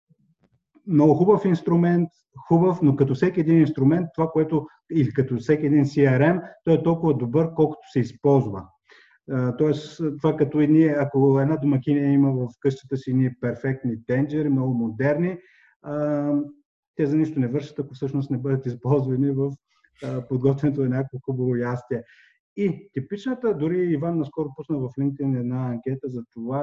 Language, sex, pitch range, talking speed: Bulgarian, male, 130-155 Hz, 155 wpm